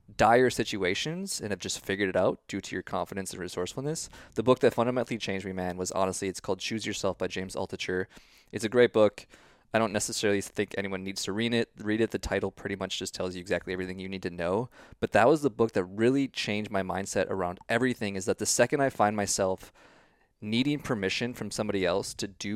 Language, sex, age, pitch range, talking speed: English, male, 20-39, 95-120 Hz, 225 wpm